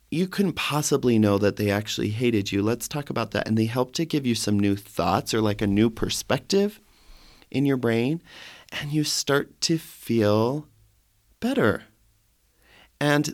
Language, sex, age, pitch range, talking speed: English, male, 30-49, 100-130 Hz, 165 wpm